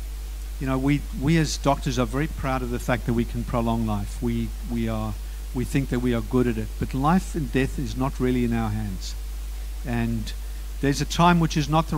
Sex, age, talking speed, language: male, 50-69, 230 wpm, English